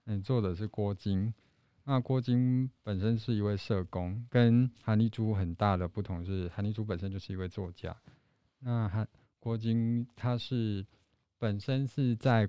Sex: male